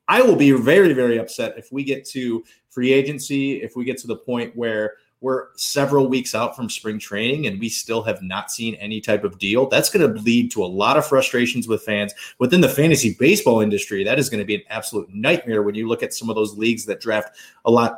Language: English